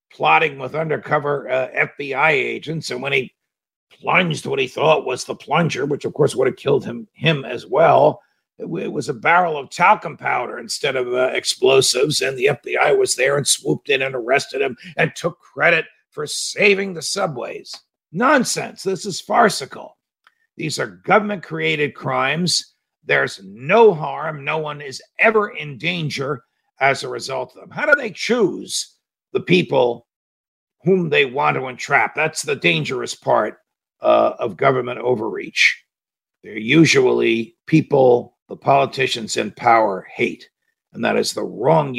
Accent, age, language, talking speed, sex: American, 50-69, English, 160 wpm, male